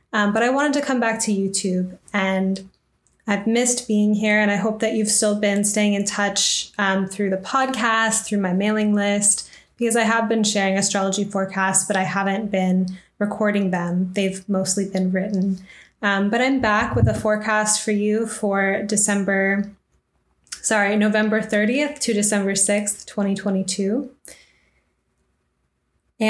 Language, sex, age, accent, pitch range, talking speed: English, female, 10-29, American, 195-225 Hz, 155 wpm